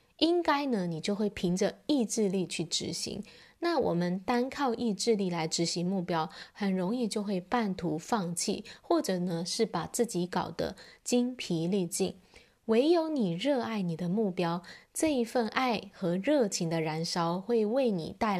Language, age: Chinese, 20-39